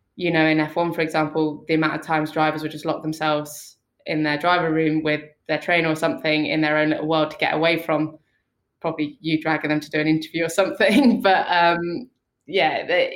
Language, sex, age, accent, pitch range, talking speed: English, female, 20-39, British, 150-165 Hz, 210 wpm